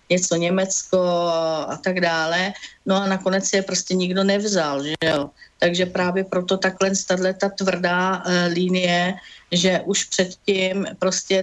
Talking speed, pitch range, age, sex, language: 140 wpm, 180-200 Hz, 50-69, female, Slovak